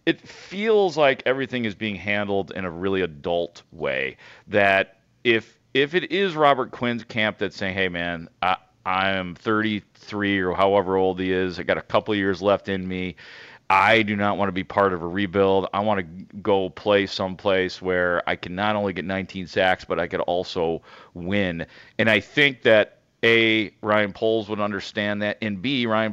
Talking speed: 190 wpm